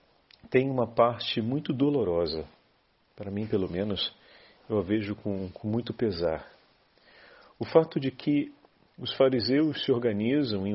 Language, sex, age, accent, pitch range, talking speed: Portuguese, male, 40-59, Brazilian, 105-135 Hz, 140 wpm